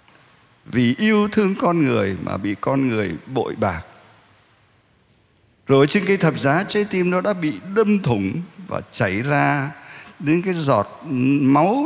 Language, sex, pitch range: Vietnamese, male, 110-170 Hz